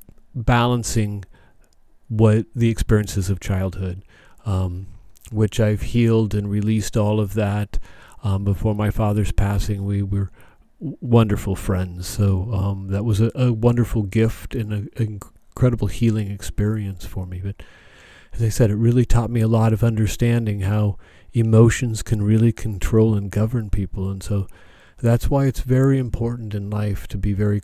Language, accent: English, American